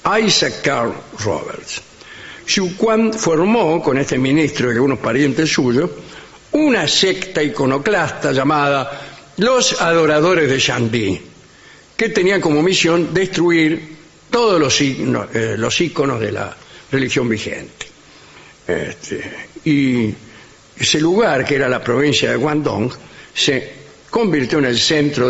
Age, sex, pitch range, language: 60-79, male, 125-165 Hz, English